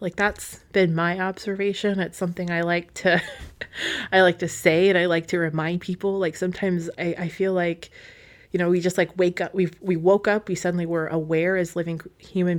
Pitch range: 165-185 Hz